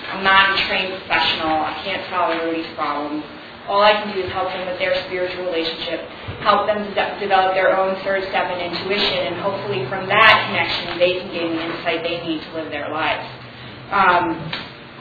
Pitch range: 180-220 Hz